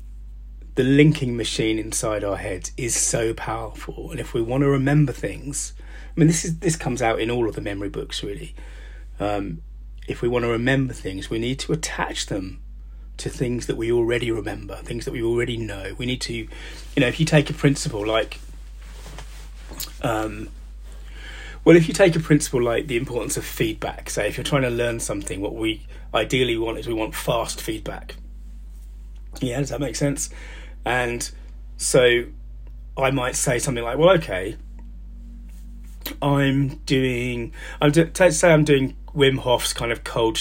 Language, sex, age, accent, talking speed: English, male, 30-49, British, 175 wpm